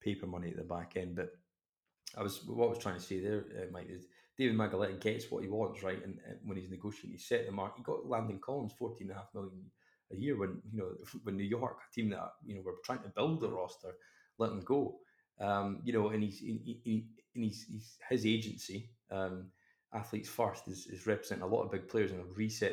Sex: male